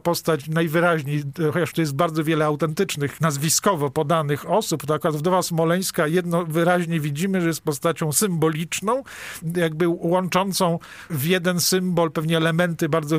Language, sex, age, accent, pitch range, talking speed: Polish, male, 50-69, native, 160-180 Hz, 130 wpm